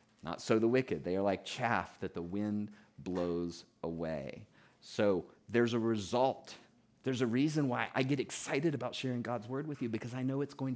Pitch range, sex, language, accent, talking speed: 100-130 Hz, male, English, American, 195 wpm